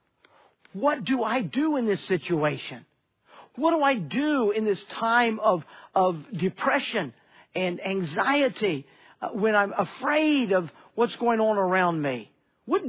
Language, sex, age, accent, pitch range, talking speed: English, male, 50-69, American, 185-240 Hz, 135 wpm